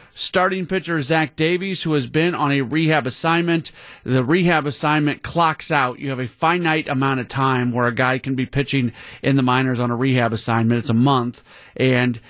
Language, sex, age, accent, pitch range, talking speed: English, male, 40-59, American, 130-160 Hz, 195 wpm